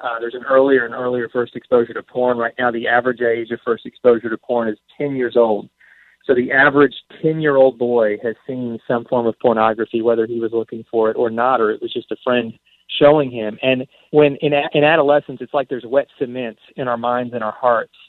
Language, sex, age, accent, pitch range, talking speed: English, male, 40-59, American, 120-140 Hz, 220 wpm